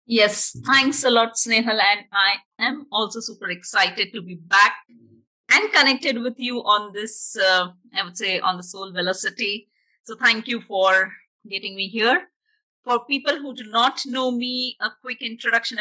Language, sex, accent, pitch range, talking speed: English, female, Indian, 205-245 Hz, 170 wpm